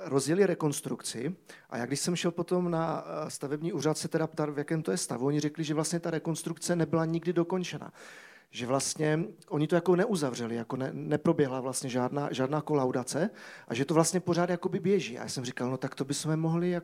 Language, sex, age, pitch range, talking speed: Czech, male, 40-59, 135-180 Hz, 195 wpm